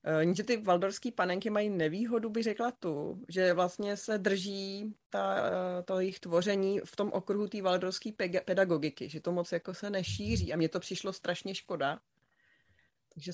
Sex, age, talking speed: female, 30-49, 165 wpm